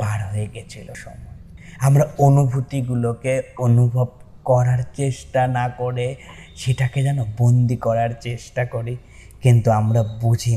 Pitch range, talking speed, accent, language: 115-130 Hz, 110 wpm, native, Bengali